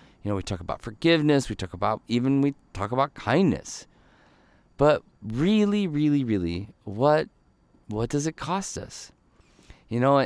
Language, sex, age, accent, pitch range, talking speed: English, male, 40-59, American, 110-150 Hz, 150 wpm